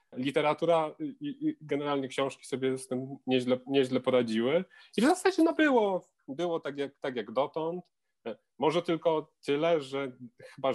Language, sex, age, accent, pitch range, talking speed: Polish, male, 30-49, native, 125-150 Hz, 150 wpm